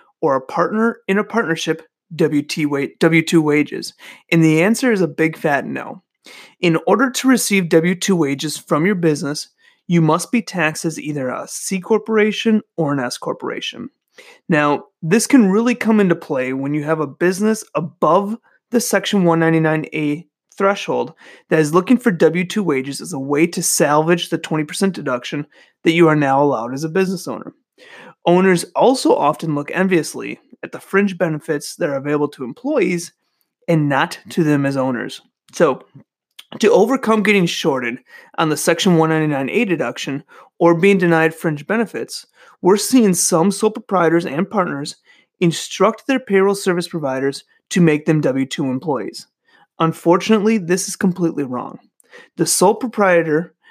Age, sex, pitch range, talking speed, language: 30-49, male, 155-200 Hz, 155 wpm, English